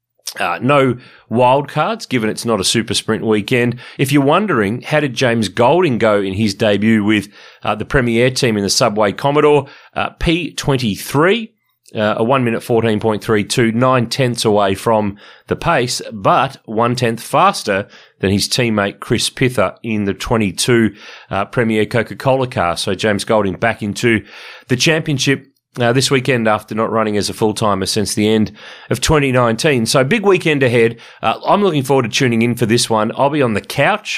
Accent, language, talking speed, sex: Australian, English, 170 wpm, male